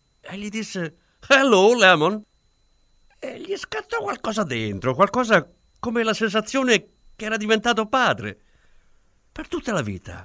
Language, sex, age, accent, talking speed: Italian, male, 50-69, native, 130 wpm